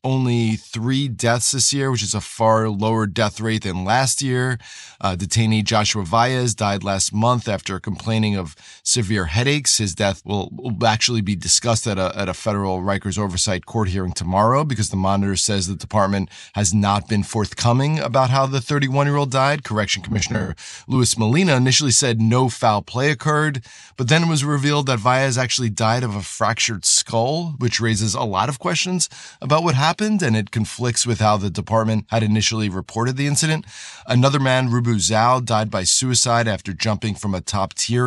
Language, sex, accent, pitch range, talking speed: English, male, American, 100-130 Hz, 185 wpm